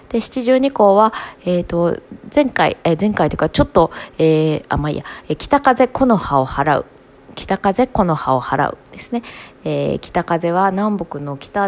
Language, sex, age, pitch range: Japanese, female, 20-39, 160-245 Hz